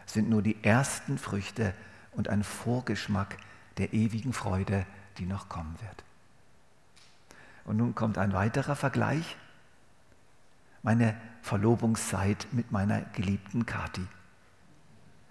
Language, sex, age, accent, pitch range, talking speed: German, male, 50-69, German, 100-115 Hz, 105 wpm